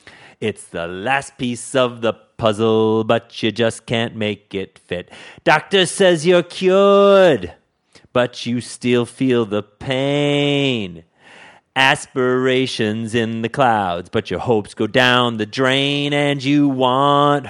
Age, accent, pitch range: 40-59, American, 115-160 Hz